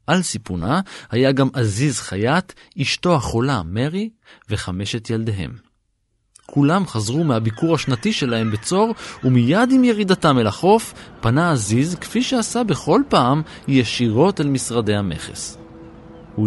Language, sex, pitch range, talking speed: Hebrew, male, 110-165 Hz, 120 wpm